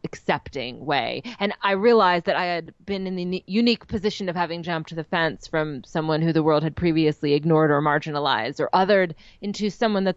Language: English